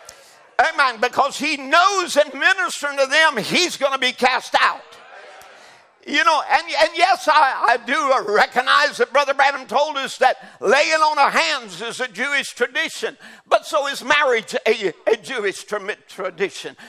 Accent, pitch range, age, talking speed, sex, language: American, 260-340 Hz, 60-79, 160 wpm, male, English